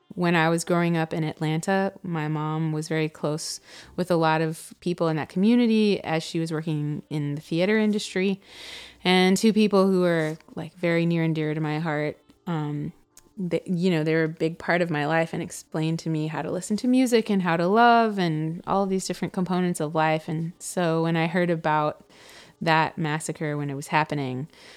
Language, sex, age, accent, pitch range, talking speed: English, female, 20-39, American, 150-175 Hz, 210 wpm